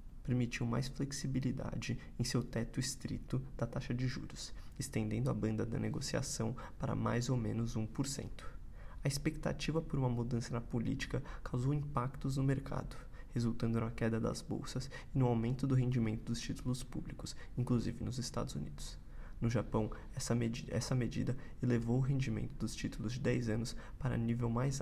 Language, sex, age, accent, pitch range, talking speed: Portuguese, male, 20-39, Brazilian, 115-130 Hz, 155 wpm